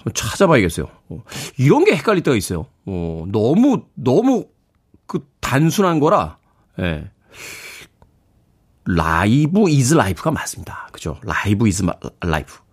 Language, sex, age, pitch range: Korean, male, 40-59, 95-160 Hz